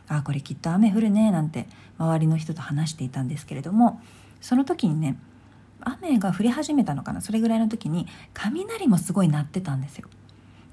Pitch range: 135-215 Hz